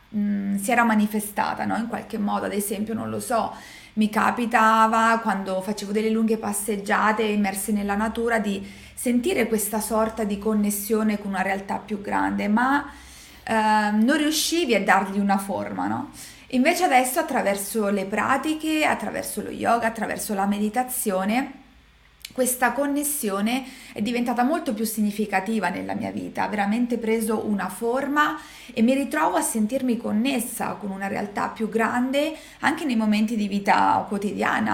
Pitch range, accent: 205-255 Hz, native